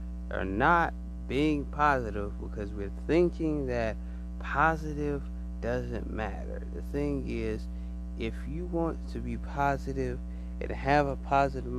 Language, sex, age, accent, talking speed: English, male, 30-49, American, 120 wpm